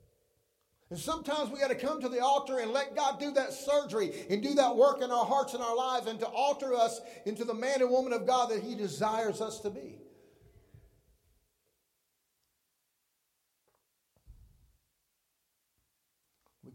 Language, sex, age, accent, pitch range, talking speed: English, male, 50-69, American, 205-280 Hz, 155 wpm